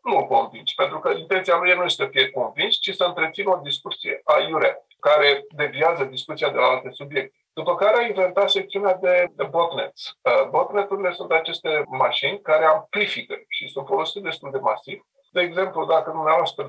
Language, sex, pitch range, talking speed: Romanian, male, 150-205 Hz, 185 wpm